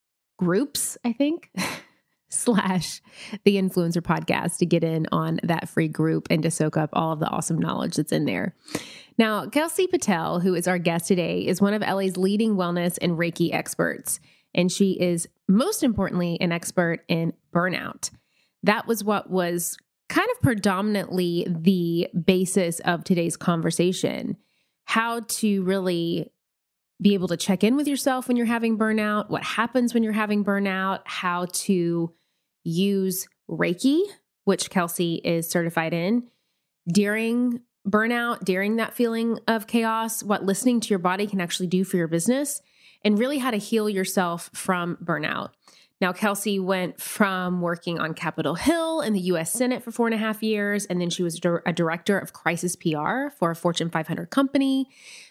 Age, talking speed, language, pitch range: 20-39, 165 wpm, English, 175-220 Hz